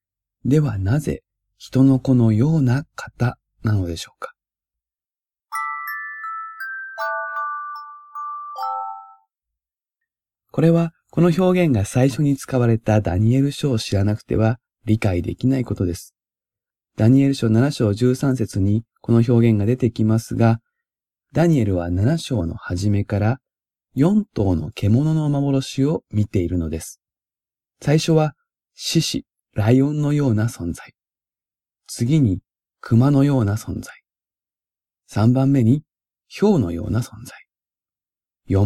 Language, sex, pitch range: Japanese, male, 105-140 Hz